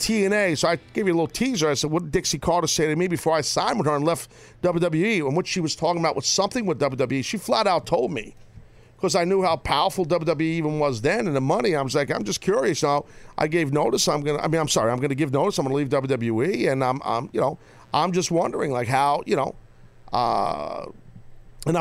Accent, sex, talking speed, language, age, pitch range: American, male, 260 wpm, English, 50-69, 135-175 Hz